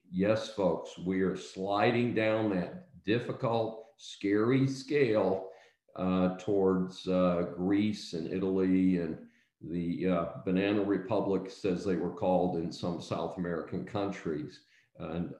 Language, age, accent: English, 50-69, American